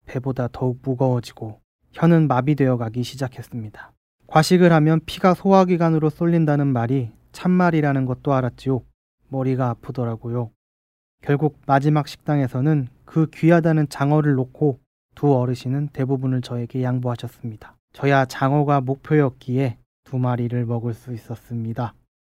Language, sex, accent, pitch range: Korean, male, native, 120-150 Hz